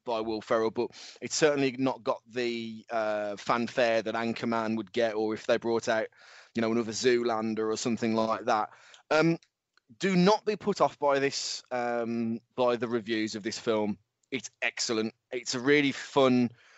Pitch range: 110-125 Hz